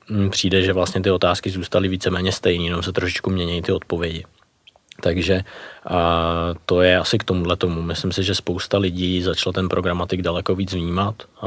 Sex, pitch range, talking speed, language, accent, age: male, 85-90 Hz, 175 wpm, Czech, native, 20-39